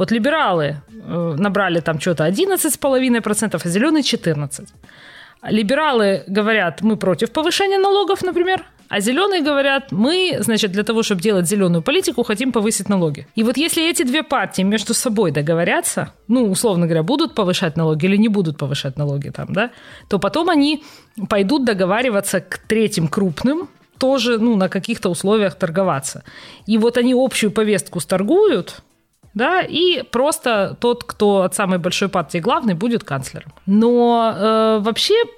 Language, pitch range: Ukrainian, 175-245 Hz